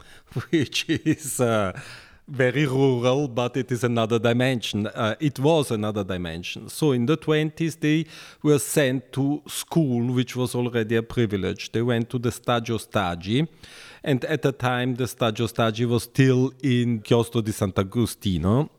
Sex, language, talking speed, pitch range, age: male, English, 155 wpm, 105-130 Hz, 50-69